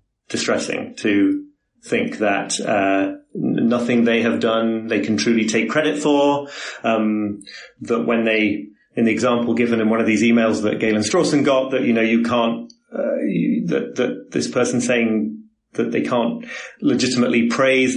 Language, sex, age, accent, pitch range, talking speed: English, male, 30-49, British, 115-145 Hz, 165 wpm